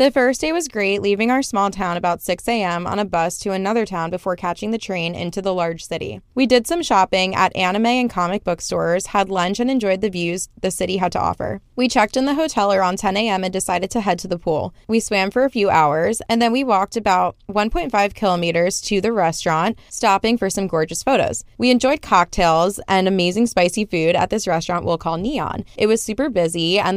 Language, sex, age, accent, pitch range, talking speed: English, female, 20-39, American, 175-230 Hz, 225 wpm